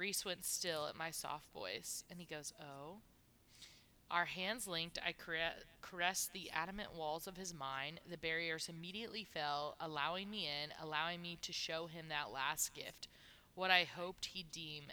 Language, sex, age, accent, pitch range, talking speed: English, female, 20-39, American, 150-180 Hz, 175 wpm